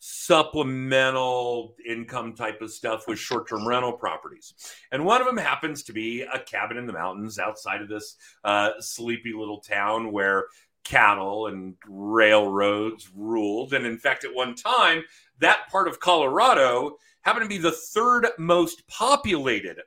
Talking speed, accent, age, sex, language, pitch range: 155 wpm, American, 40-59, male, English, 115-170 Hz